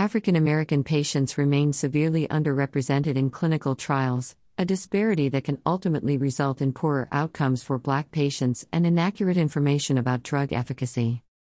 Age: 50-69